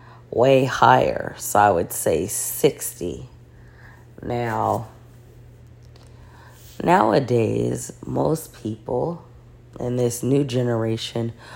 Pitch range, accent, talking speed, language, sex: 115-125 Hz, American, 80 wpm, English, female